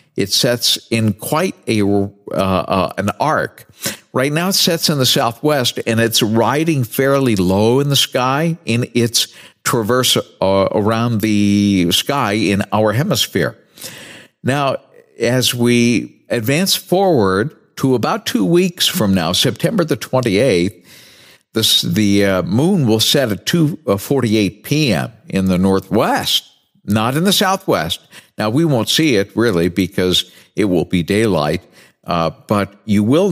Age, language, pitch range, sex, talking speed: 50-69, English, 100-135 Hz, male, 145 wpm